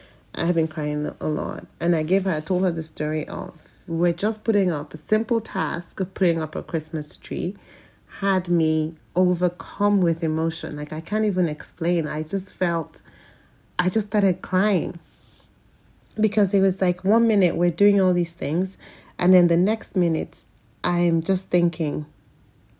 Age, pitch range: 30-49, 155-190 Hz